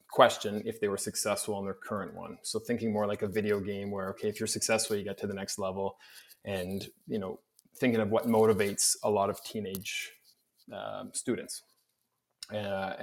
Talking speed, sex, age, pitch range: 190 wpm, male, 20-39, 100-110 Hz